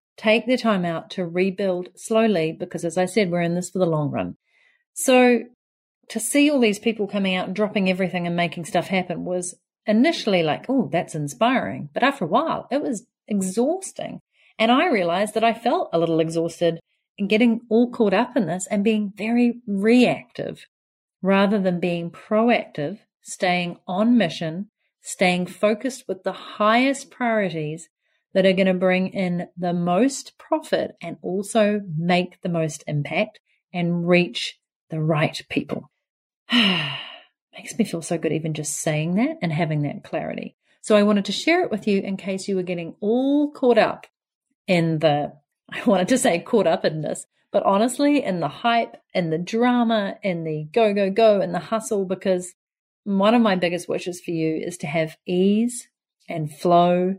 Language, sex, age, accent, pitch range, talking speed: English, female, 40-59, Australian, 175-225 Hz, 175 wpm